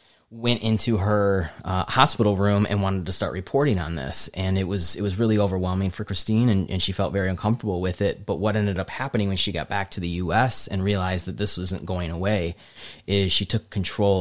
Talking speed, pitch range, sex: 225 wpm, 90-105 Hz, male